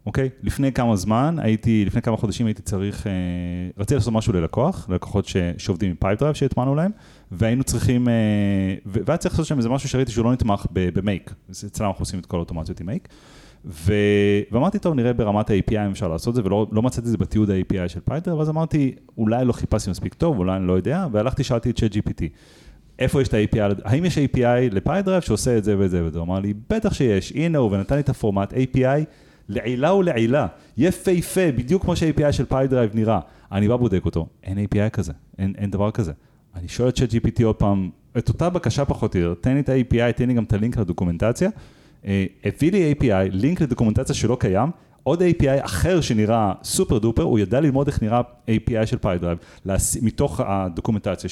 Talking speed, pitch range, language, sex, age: 165 wpm, 100-130 Hz, Hebrew, male, 30-49